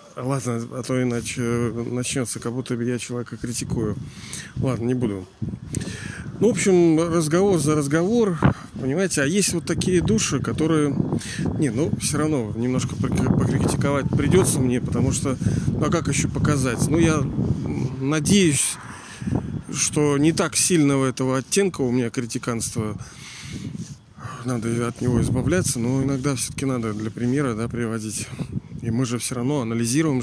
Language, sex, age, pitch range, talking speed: Russian, male, 40-59, 120-150 Hz, 145 wpm